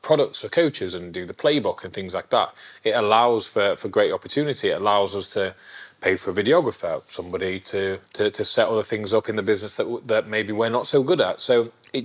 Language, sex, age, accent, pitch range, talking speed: English, male, 20-39, British, 100-155 Hz, 230 wpm